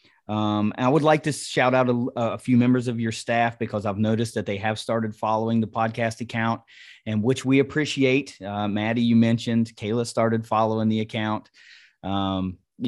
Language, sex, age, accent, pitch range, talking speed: English, male, 30-49, American, 105-120 Hz, 180 wpm